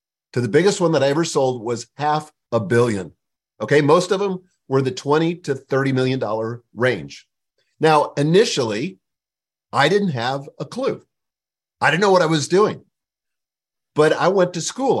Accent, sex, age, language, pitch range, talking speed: American, male, 50-69, English, 130-165 Hz, 170 wpm